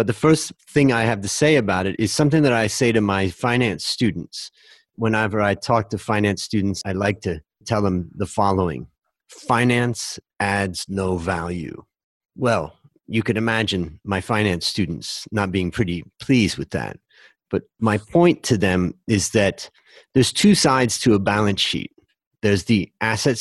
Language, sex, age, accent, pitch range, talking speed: English, male, 40-59, American, 100-135 Hz, 170 wpm